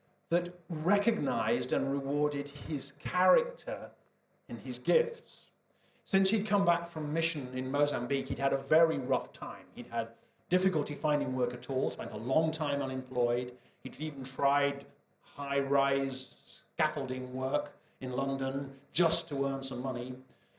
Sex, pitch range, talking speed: male, 135-175 Hz, 140 wpm